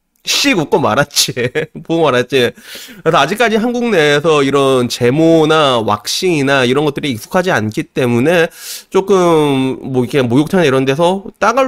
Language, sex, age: Korean, male, 30-49